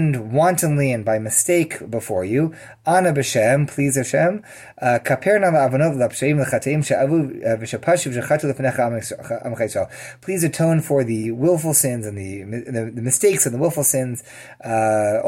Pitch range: 115-145 Hz